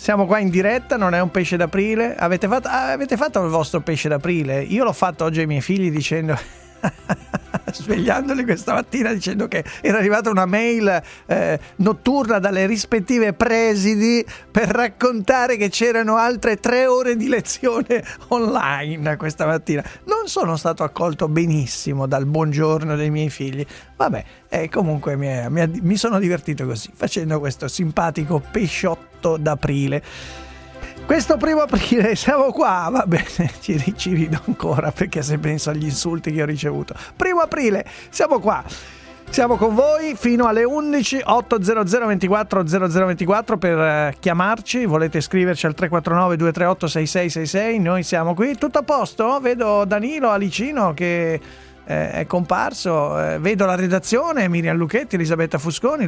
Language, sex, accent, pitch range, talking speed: Italian, male, native, 160-230 Hz, 140 wpm